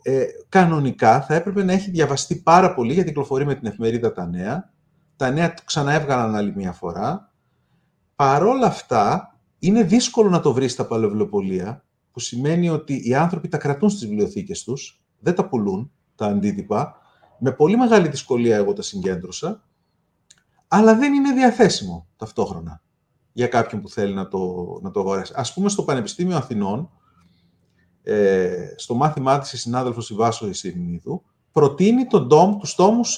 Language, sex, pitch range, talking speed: Greek, male, 115-185 Hz, 155 wpm